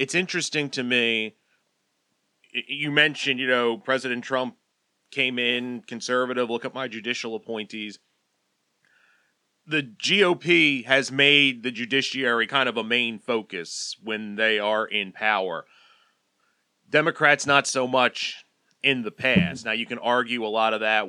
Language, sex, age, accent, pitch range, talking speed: English, male, 30-49, American, 110-145 Hz, 140 wpm